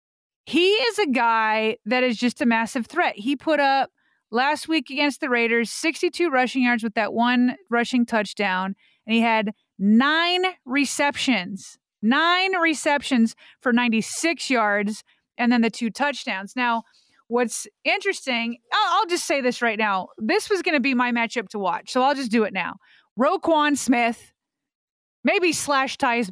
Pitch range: 220-295 Hz